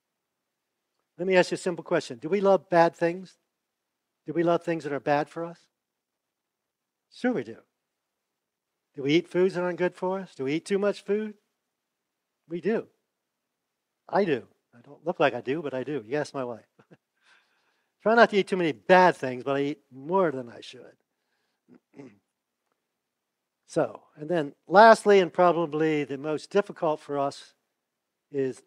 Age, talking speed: 50-69, 170 wpm